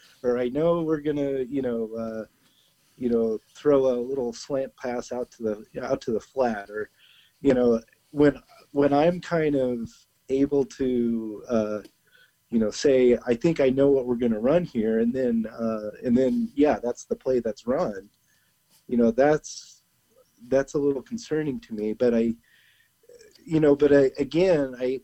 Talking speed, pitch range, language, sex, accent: 175 wpm, 115-140 Hz, English, male, American